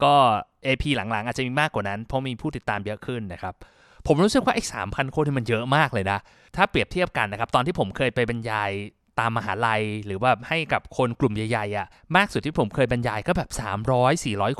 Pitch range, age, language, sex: 115-155 Hz, 20-39, Thai, male